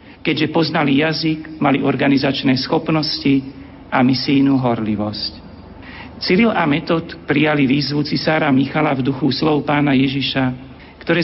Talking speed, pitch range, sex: 115 wpm, 120-150 Hz, male